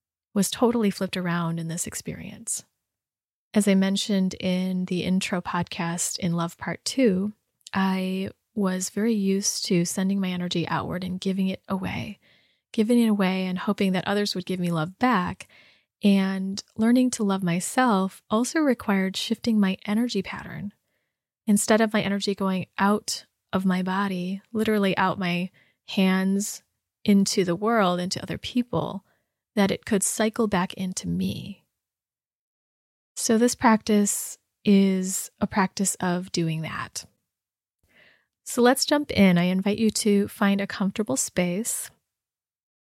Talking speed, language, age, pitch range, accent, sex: 140 wpm, English, 20-39, 185-210 Hz, American, female